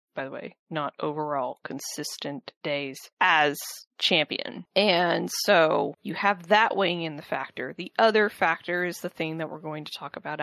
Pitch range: 150-190 Hz